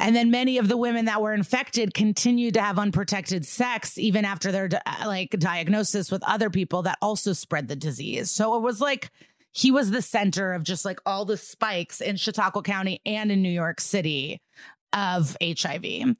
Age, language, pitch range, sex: 30-49, English, 175-215 Hz, female